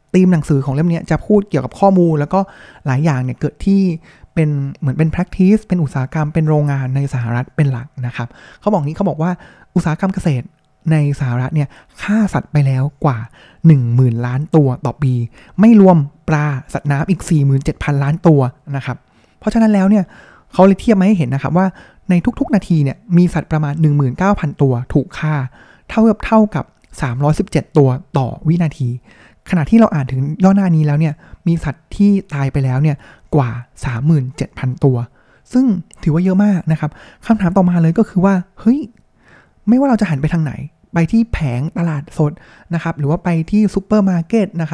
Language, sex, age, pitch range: Thai, male, 20-39, 140-185 Hz